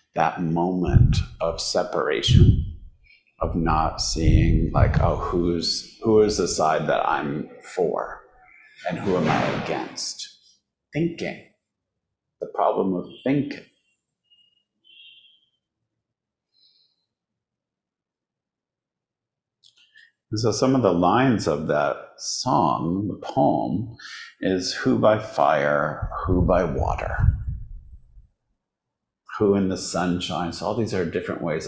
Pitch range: 85-110 Hz